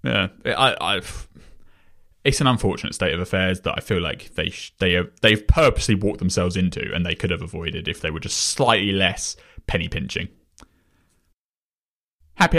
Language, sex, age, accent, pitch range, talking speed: English, male, 20-39, British, 90-120 Hz, 165 wpm